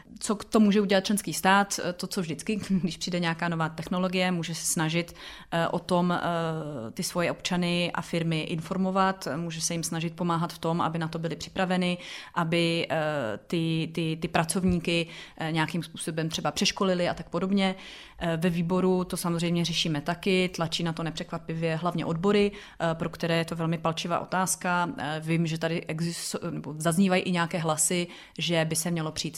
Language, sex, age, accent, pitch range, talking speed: Czech, female, 30-49, native, 165-180 Hz, 170 wpm